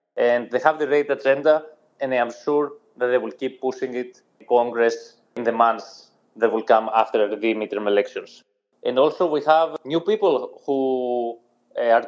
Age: 20-39